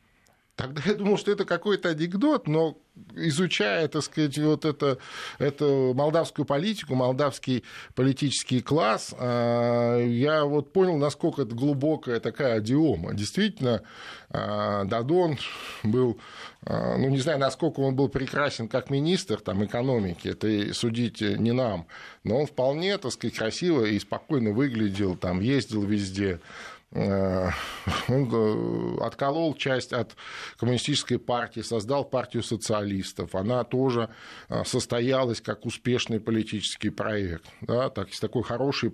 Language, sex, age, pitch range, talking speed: Russian, male, 20-39, 105-135 Hz, 115 wpm